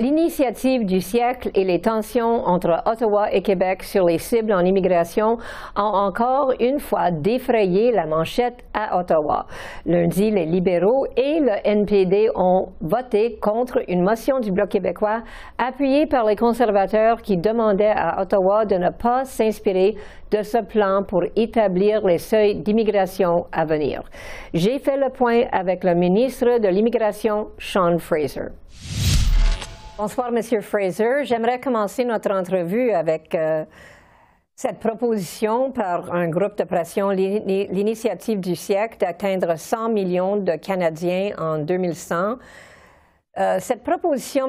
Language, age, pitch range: French, 50-69, 180-235 Hz